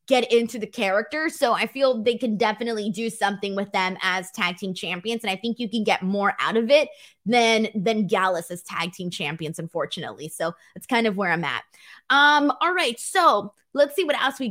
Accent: American